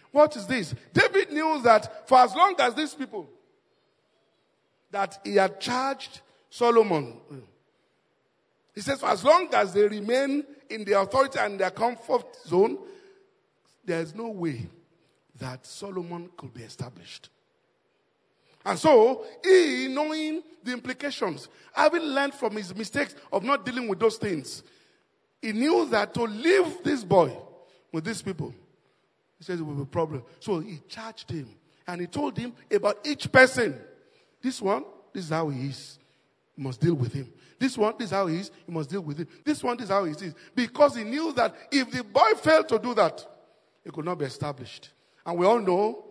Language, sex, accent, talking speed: English, male, Nigerian, 180 wpm